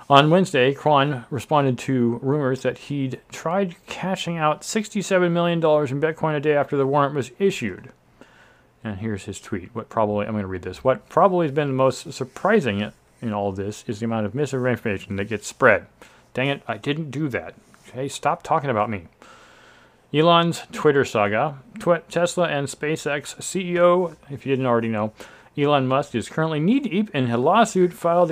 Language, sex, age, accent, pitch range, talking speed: English, male, 40-59, American, 115-160 Hz, 180 wpm